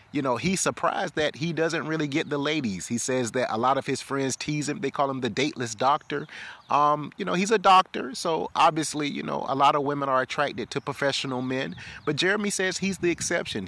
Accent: American